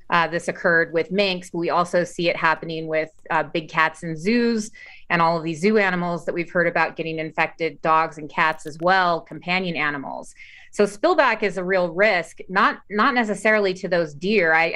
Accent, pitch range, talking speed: American, 165-195 Hz, 195 wpm